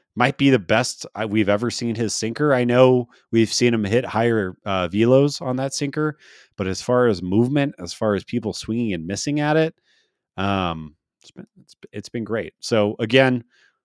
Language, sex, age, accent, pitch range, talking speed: English, male, 30-49, American, 100-135 Hz, 185 wpm